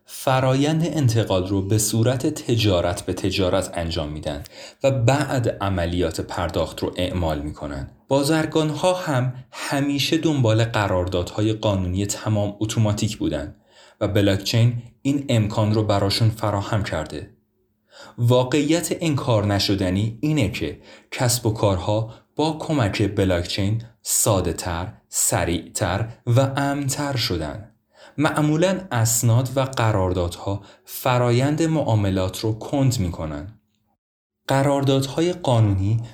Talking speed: 110 wpm